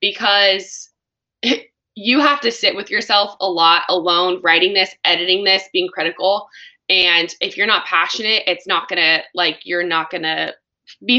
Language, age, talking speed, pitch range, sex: English, 20-39, 155 wpm, 175-210 Hz, female